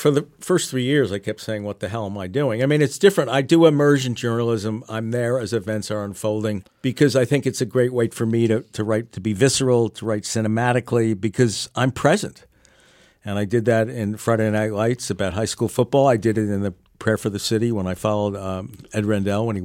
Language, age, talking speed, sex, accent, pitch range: English, 50-69, 240 wpm, male, American, 105-130 Hz